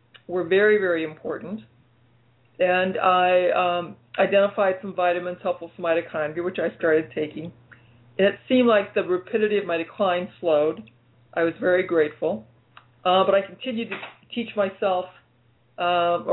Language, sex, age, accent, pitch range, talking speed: English, female, 50-69, American, 155-195 Hz, 140 wpm